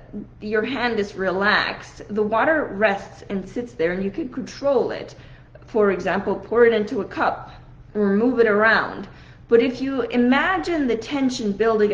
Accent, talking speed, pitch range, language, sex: American, 165 wpm, 210-280 Hz, English, female